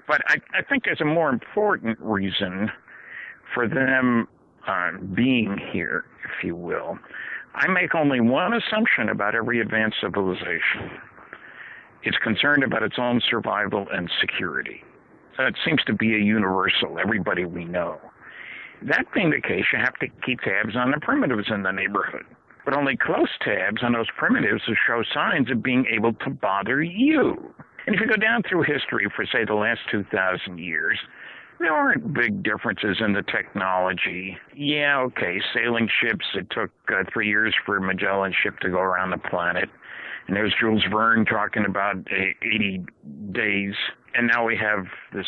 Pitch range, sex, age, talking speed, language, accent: 100-130 Hz, male, 60-79, 165 wpm, English, American